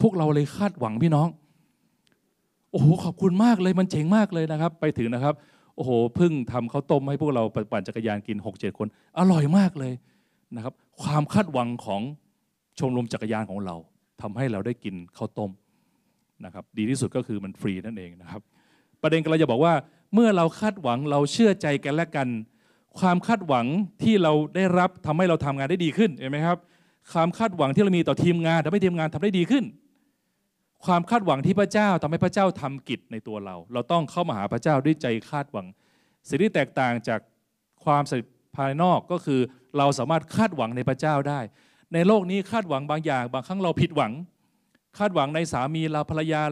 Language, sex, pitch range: Thai, male, 125-180 Hz